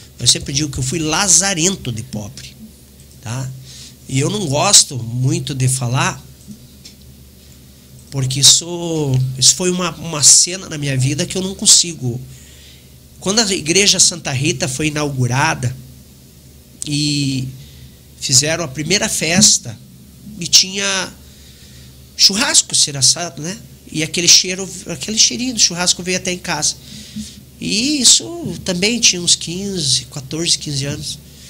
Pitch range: 125-185 Hz